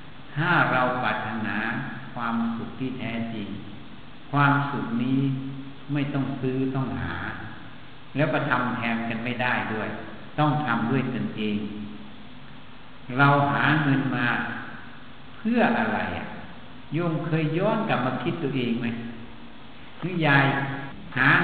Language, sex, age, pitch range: Thai, male, 60-79, 125-150 Hz